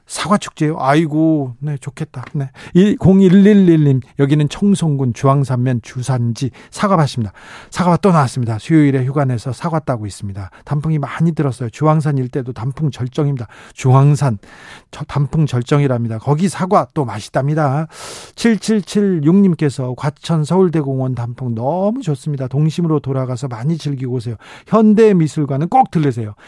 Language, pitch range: Korean, 130-170 Hz